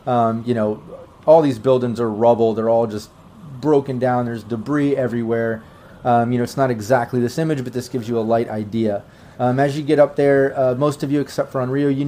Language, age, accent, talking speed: English, 30-49, American, 225 wpm